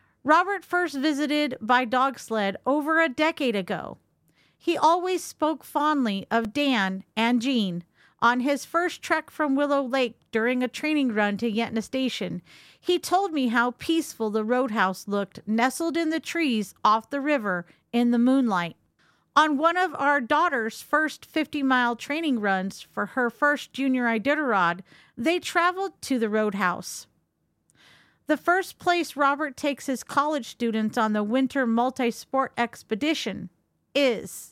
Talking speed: 145 wpm